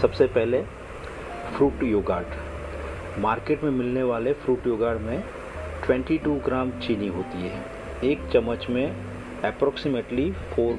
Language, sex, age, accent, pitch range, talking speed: Hindi, male, 40-59, native, 100-130 Hz, 115 wpm